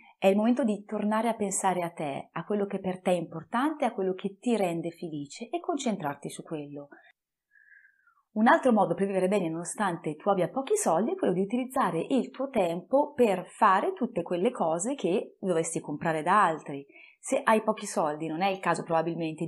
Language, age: Italian, 30-49